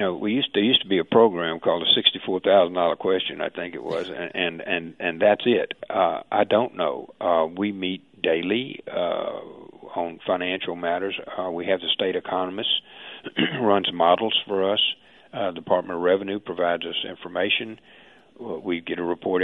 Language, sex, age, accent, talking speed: English, male, 50-69, American, 185 wpm